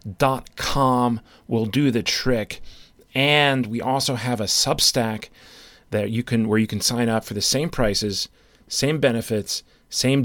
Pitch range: 110-130 Hz